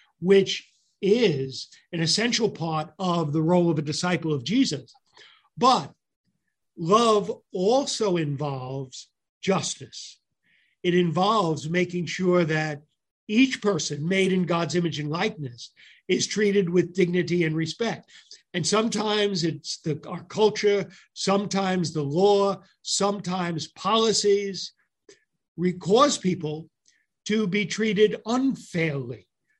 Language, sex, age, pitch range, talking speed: English, male, 50-69, 160-205 Hz, 105 wpm